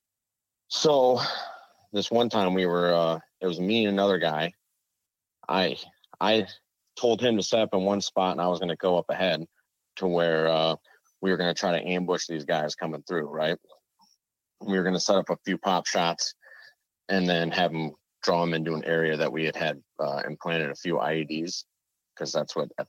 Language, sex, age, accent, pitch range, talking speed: English, male, 30-49, American, 80-95 Hz, 205 wpm